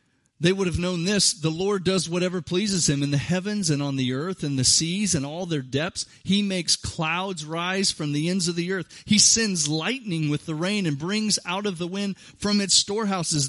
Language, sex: English, male